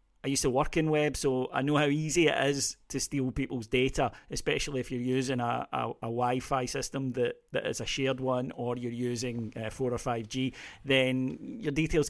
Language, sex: English, male